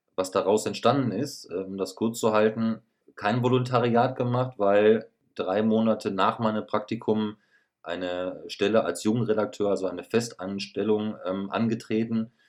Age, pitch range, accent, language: 30-49, 95-115 Hz, German, German